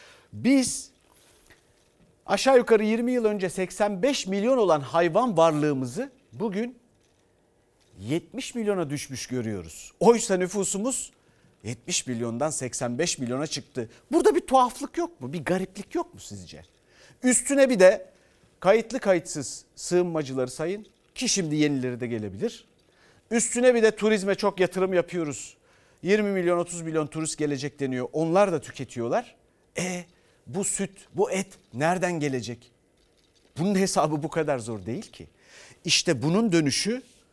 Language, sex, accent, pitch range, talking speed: Turkish, male, native, 140-205 Hz, 125 wpm